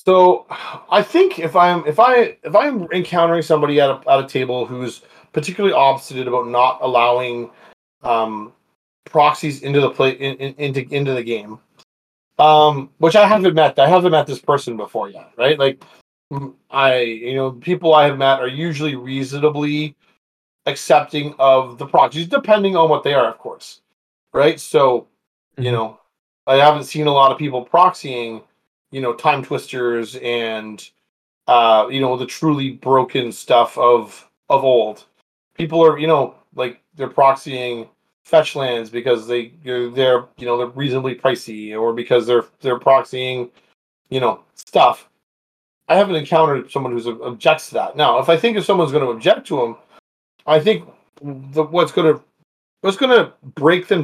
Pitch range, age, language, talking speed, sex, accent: 125-160 Hz, 30-49, English, 165 wpm, male, American